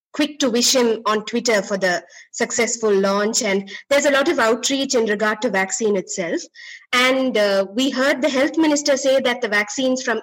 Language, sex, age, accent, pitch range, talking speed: English, female, 20-39, Indian, 205-255 Hz, 180 wpm